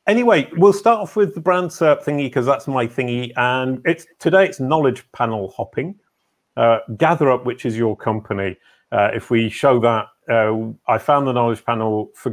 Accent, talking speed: British, 185 wpm